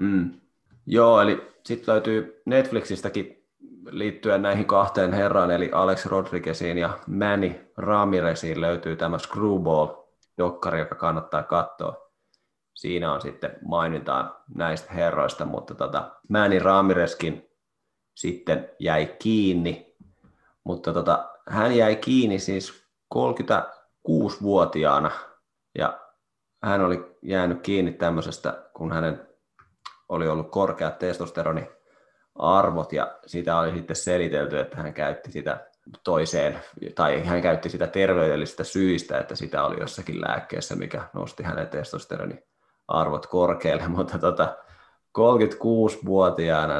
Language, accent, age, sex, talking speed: Finnish, native, 30-49, male, 110 wpm